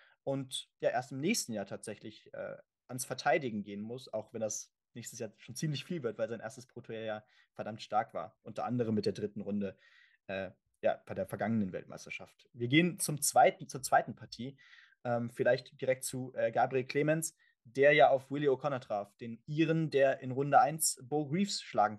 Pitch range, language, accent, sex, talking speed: 120-145 Hz, German, German, male, 190 wpm